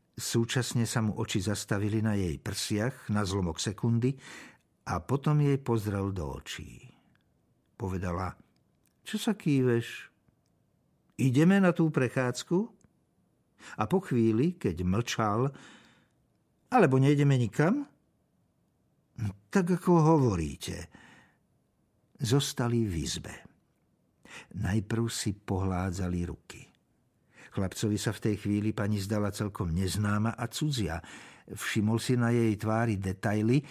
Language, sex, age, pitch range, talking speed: Slovak, male, 60-79, 95-130 Hz, 105 wpm